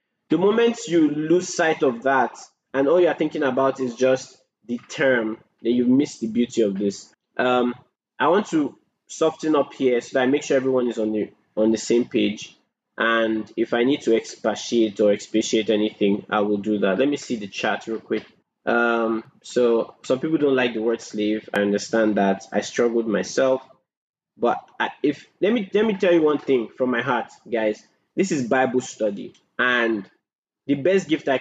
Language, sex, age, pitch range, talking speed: English, male, 20-39, 110-135 Hz, 195 wpm